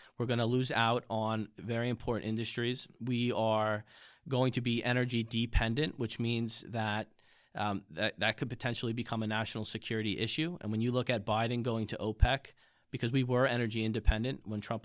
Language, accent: English, American